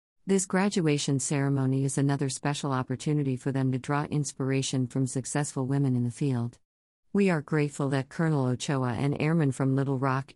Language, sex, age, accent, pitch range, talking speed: English, female, 50-69, American, 130-155 Hz, 170 wpm